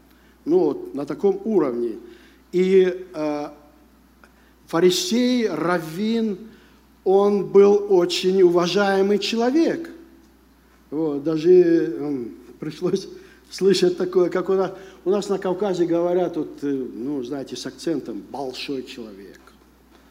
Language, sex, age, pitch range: Russian, male, 60-79, 170-260 Hz